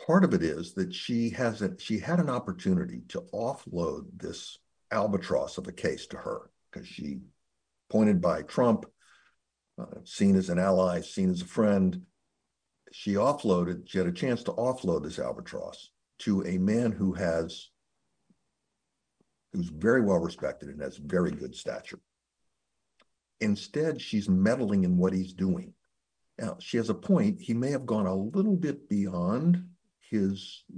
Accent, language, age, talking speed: American, English, 60-79, 155 wpm